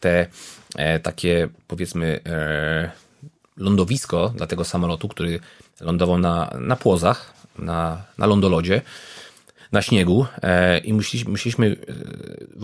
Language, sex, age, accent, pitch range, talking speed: Polish, male, 30-49, native, 85-110 Hz, 115 wpm